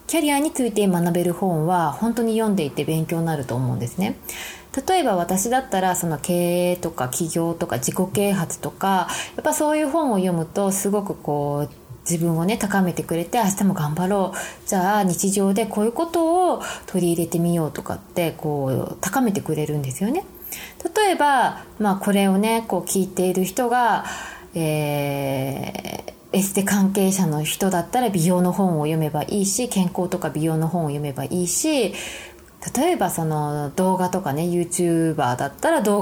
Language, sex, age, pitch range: Japanese, female, 20-39, 165-215 Hz